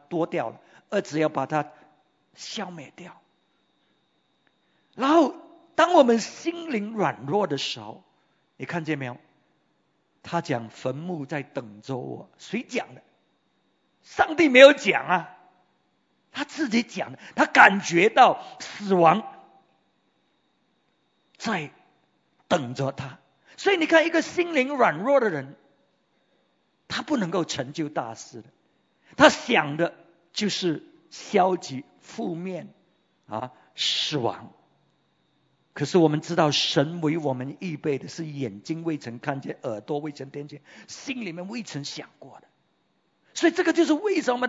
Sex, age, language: male, 50-69, English